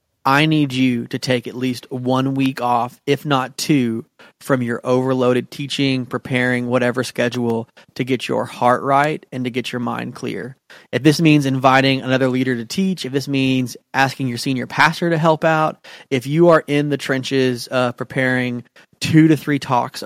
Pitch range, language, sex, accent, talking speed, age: 125-140 Hz, English, male, American, 180 wpm, 30-49